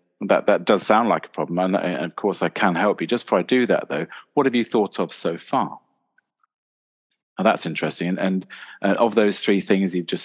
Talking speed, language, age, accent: 230 wpm, English, 40-59, British